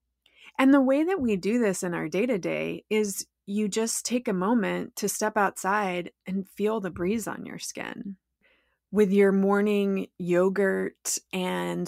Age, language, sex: 20-39, English, female